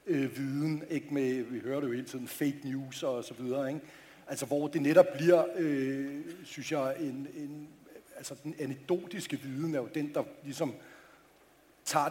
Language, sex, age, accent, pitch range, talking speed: English, male, 60-79, Danish, 140-160 Hz, 180 wpm